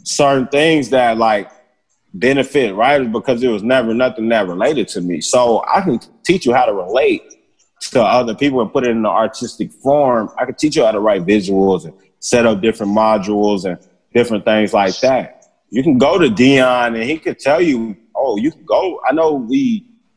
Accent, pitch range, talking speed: American, 115-145 Hz, 200 wpm